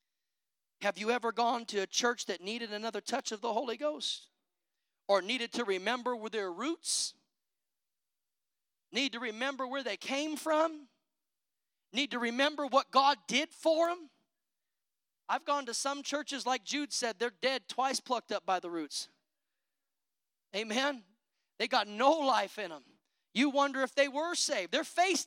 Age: 40-59